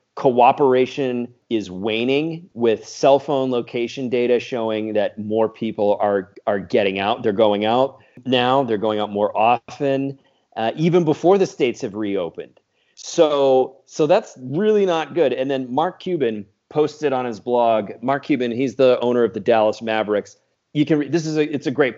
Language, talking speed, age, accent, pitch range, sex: English, 170 wpm, 30-49, American, 110-135 Hz, male